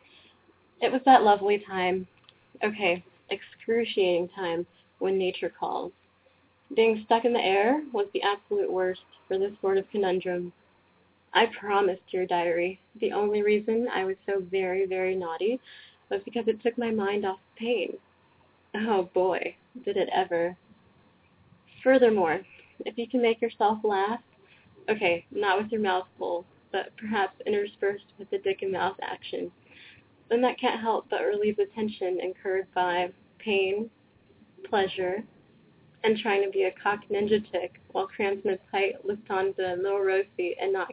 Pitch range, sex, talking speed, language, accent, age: 185-225 Hz, female, 155 wpm, English, American, 10-29